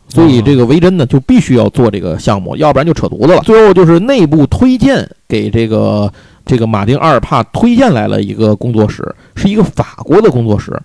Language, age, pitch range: Chinese, 50-69, 115-185 Hz